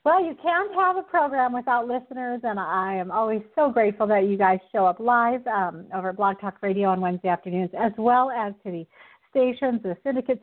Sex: female